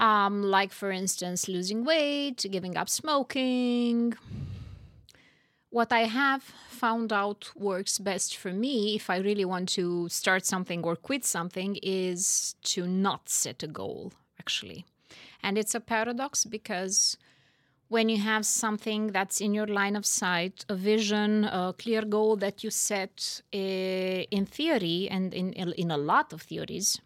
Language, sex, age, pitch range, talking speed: English, female, 20-39, 185-225 Hz, 150 wpm